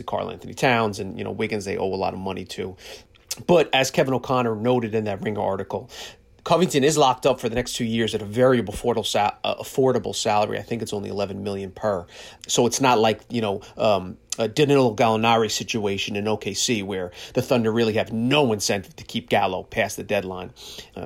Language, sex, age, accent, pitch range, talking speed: English, male, 30-49, American, 105-130 Hz, 200 wpm